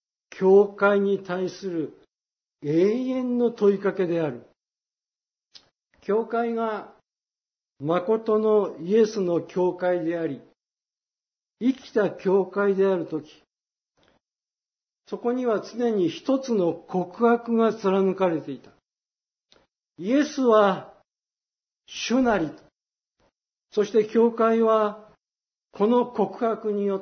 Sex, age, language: male, 60-79, Japanese